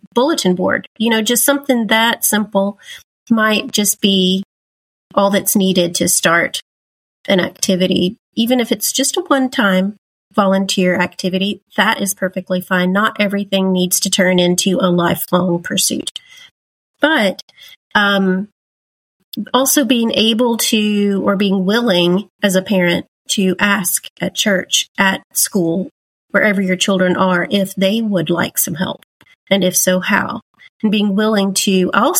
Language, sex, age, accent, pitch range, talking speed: English, female, 30-49, American, 190-255 Hz, 140 wpm